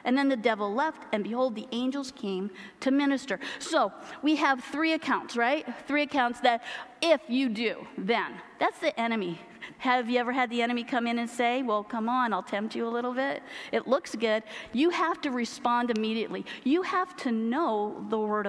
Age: 40-59